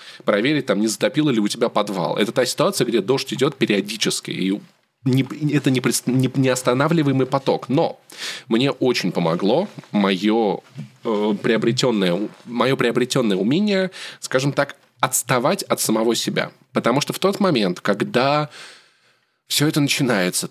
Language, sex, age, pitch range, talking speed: Russian, male, 20-39, 125-170 Hz, 140 wpm